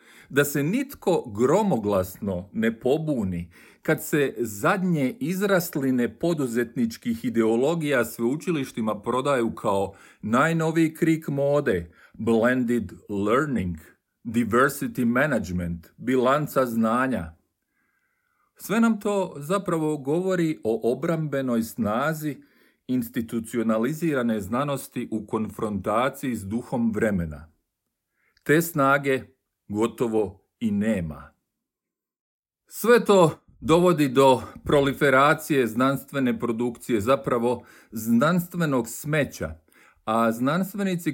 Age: 40-59